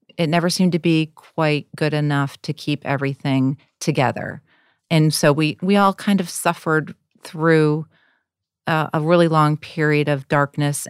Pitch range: 145-165 Hz